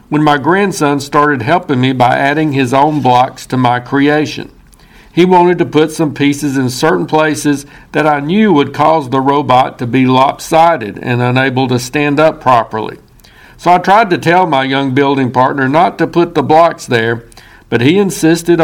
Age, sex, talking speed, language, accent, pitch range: 60-79, male, 185 wpm, English, American, 130-155 Hz